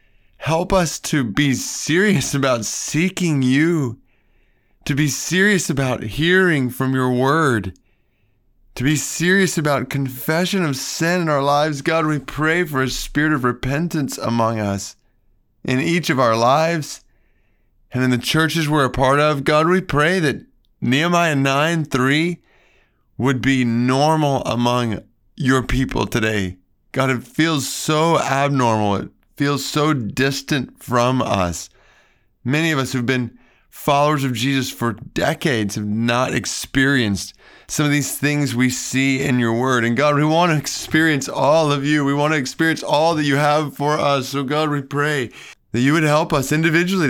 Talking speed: 160 wpm